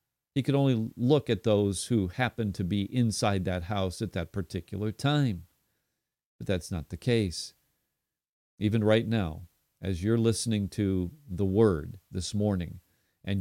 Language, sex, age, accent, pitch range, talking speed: English, male, 40-59, American, 90-110 Hz, 150 wpm